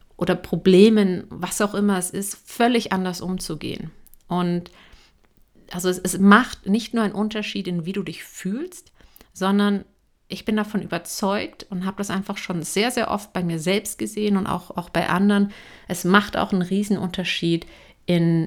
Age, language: 50-69, German